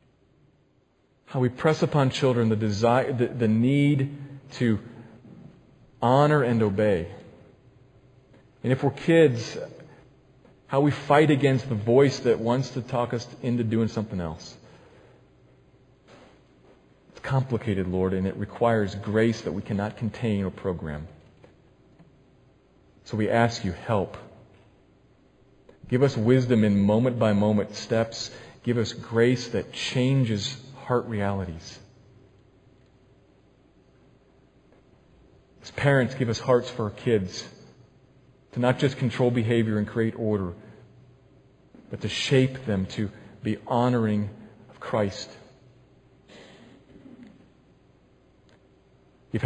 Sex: male